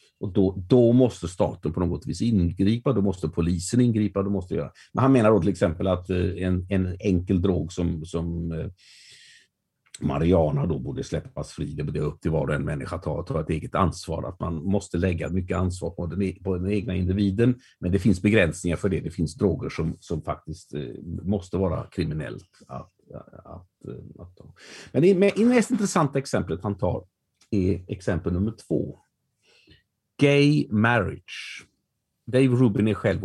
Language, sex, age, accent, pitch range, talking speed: Swedish, male, 50-69, native, 90-125 Hz, 170 wpm